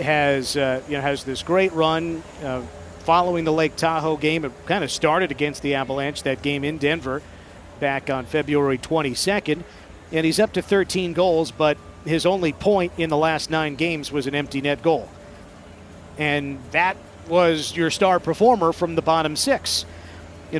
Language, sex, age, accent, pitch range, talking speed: English, male, 50-69, American, 140-175 Hz, 175 wpm